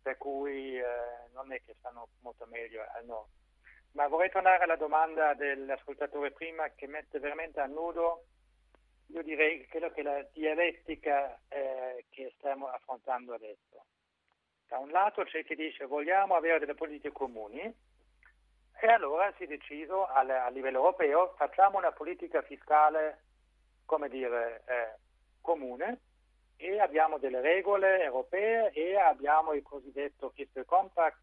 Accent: native